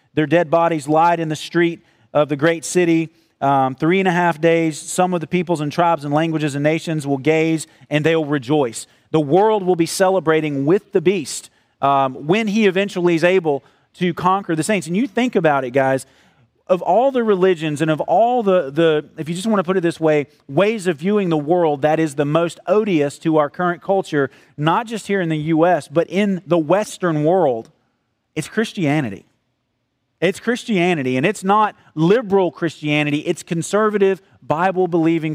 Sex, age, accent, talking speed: male, 40-59, American, 190 wpm